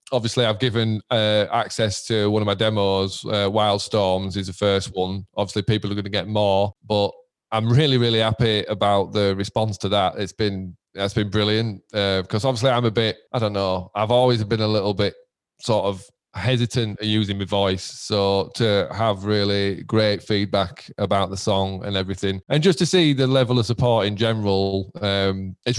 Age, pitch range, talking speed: 20-39, 100-115 Hz, 195 wpm